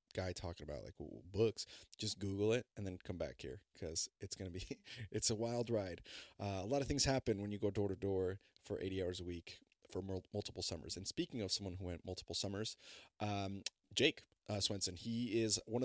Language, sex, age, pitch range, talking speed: English, male, 30-49, 95-115 Hz, 210 wpm